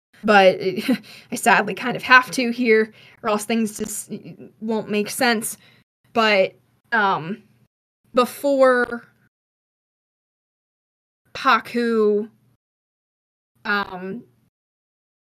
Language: English